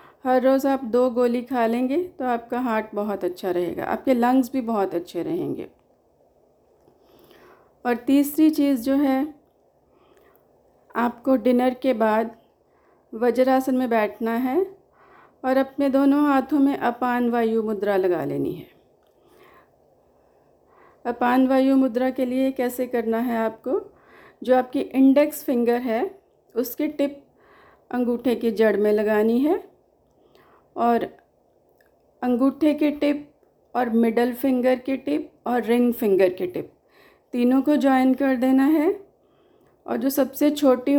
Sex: female